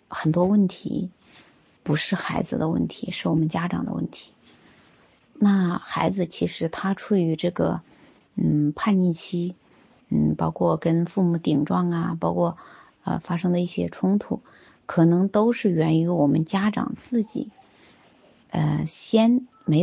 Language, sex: Chinese, female